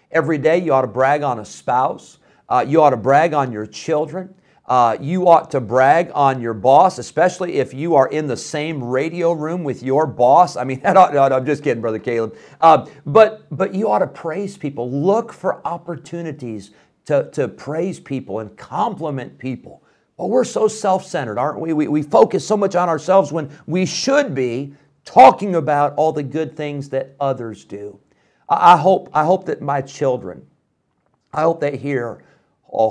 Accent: American